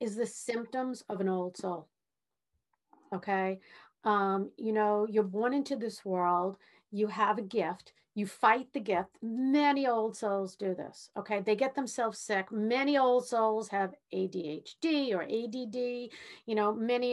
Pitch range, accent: 215-275 Hz, American